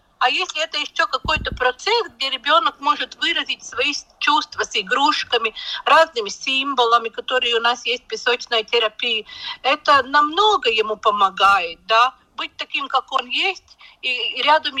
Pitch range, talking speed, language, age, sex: 250-340 Hz, 140 wpm, Russian, 50-69, female